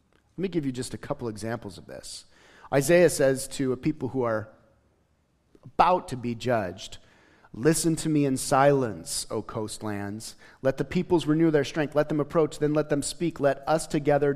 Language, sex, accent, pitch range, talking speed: English, male, American, 120-160 Hz, 185 wpm